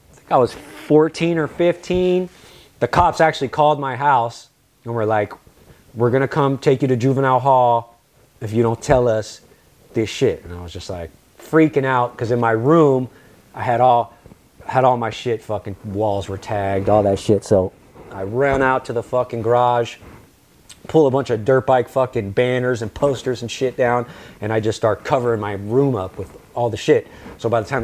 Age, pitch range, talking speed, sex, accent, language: 30-49, 110-135 Hz, 200 wpm, male, American, English